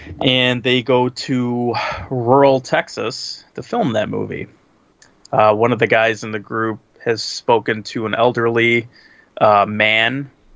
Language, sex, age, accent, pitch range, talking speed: English, male, 20-39, American, 110-130 Hz, 140 wpm